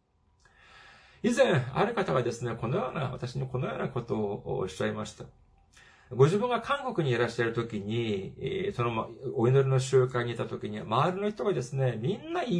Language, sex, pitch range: Japanese, male, 130-190 Hz